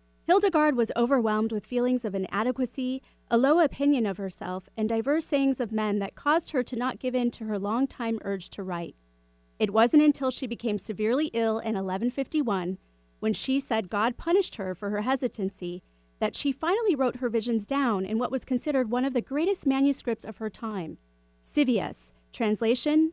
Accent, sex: American, female